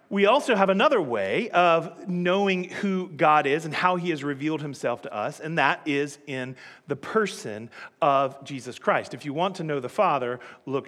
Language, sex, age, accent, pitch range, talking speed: English, male, 40-59, American, 145-185 Hz, 195 wpm